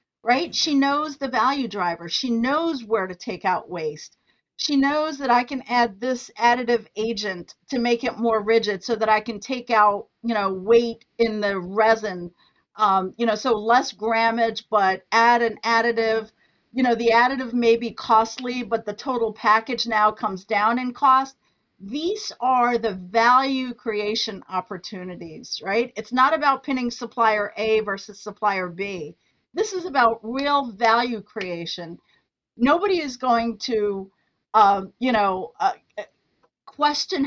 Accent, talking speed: American, 155 wpm